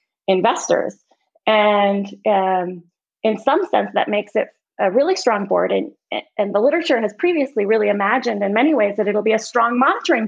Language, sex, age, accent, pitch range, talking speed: English, female, 20-39, American, 200-255 Hz, 175 wpm